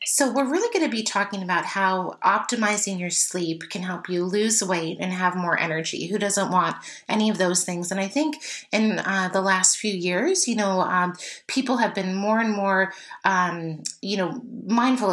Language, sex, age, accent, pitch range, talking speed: English, female, 30-49, American, 175-200 Hz, 200 wpm